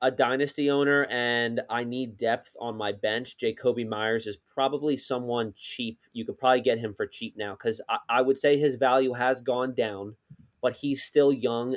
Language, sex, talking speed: English, male, 195 wpm